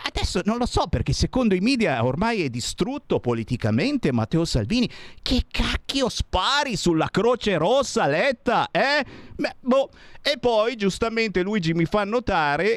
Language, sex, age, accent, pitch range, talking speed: Italian, male, 50-69, native, 130-215 Hz, 145 wpm